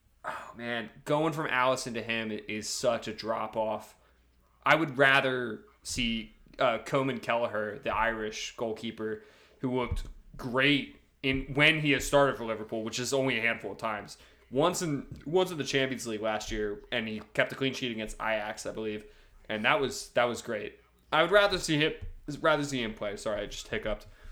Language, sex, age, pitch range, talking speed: English, male, 20-39, 110-145 Hz, 190 wpm